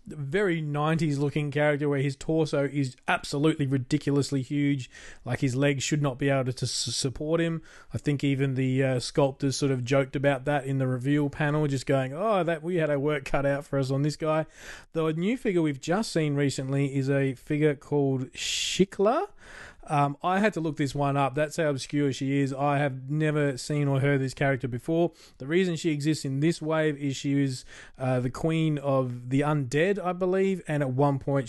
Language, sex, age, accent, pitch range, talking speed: English, male, 20-39, Australian, 135-160 Hz, 205 wpm